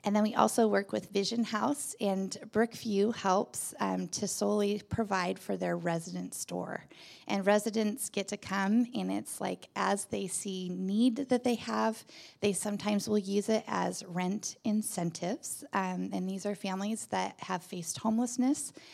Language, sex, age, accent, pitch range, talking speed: English, female, 20-39, American, 180-220 Hz, 160 wpm